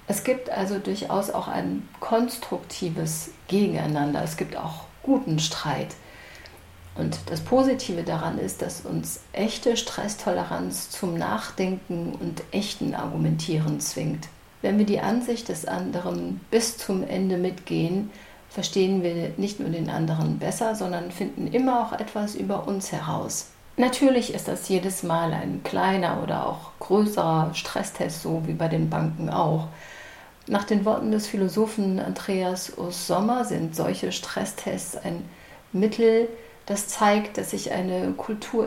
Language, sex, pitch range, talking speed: German, female, 160-210 Hz, 140 wpm